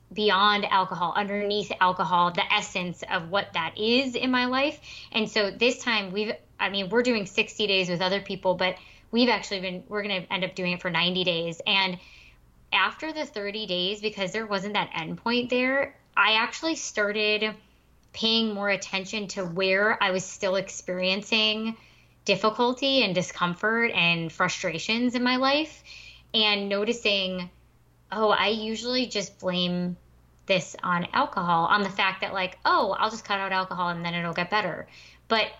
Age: 20-39